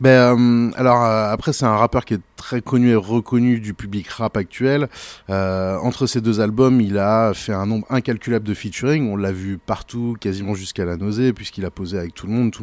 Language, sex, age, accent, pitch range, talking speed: French, male, 30-49, French, 95-120 Hz, 225 wpm